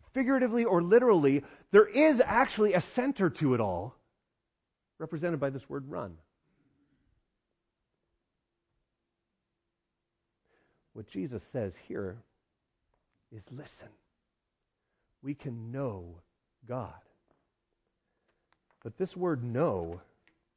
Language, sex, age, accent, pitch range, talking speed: English, male, 40-59, American, 110-165 Hz, 90 wpm